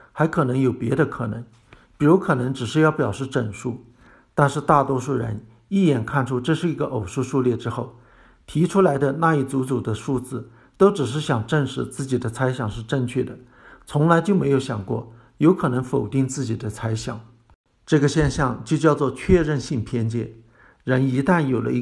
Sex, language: male, Chinese